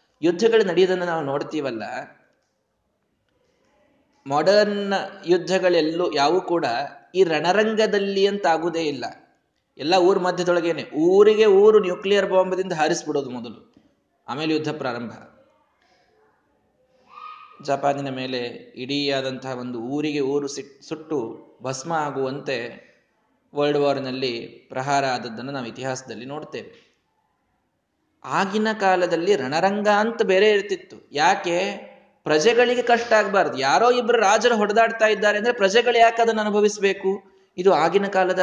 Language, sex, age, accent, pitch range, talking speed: Kannada, male, 20-39, native, 155-230 Hz, 100 wpm